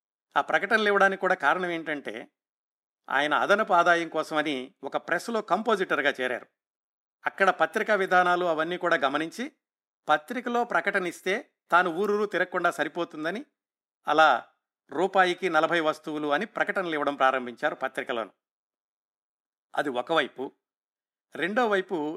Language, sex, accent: Telugu, male, native